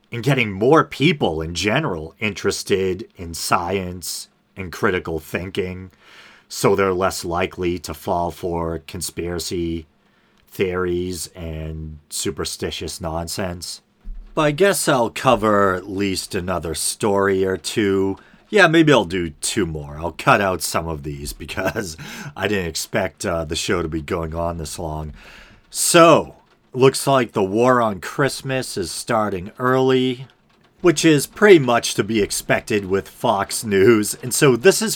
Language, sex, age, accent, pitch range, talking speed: English, male, 40-59, American, 85-130 Hz, 145 wpm